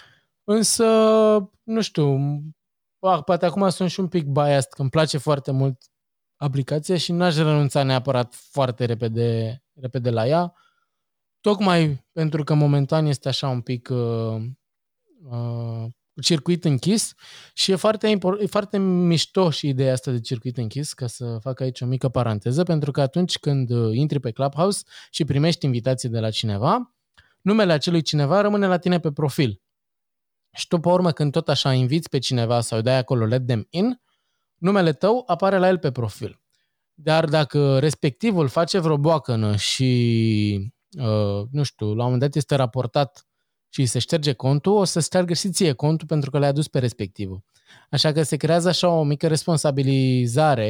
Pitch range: 130-180 Hz